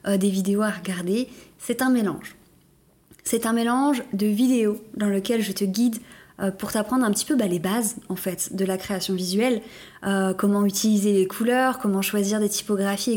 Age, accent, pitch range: 20-39, French, 195-245 Hz